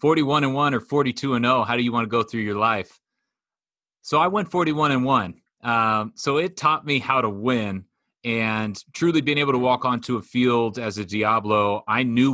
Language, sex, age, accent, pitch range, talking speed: English, male, 30-49, American, 105-130 Hz, 215 wpm